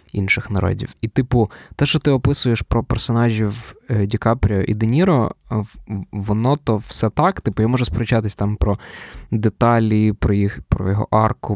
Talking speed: 155 wpm